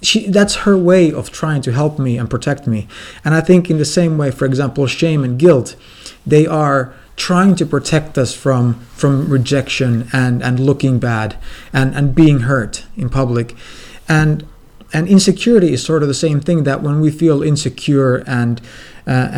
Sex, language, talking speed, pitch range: male, English, 185 wpm, 120-155 Hz